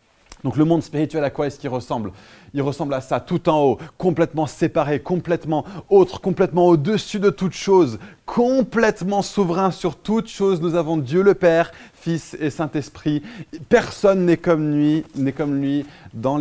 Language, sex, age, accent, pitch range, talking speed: French, male, 20-39, French, 135-185 Hz, 170 wpm